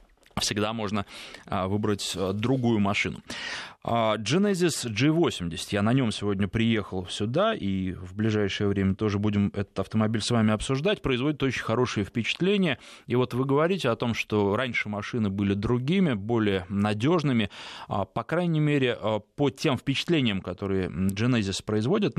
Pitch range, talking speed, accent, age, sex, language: 105-130 Hz, 135 wpm, native, 20-39, male, Russian